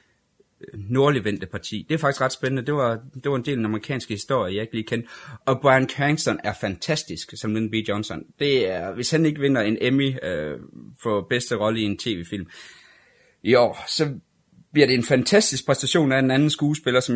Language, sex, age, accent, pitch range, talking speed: Danish, male, 30-49, native, 100-135 Hz, 200 wpm